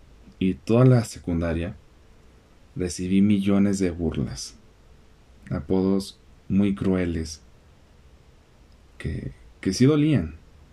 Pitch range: 75-100 Hz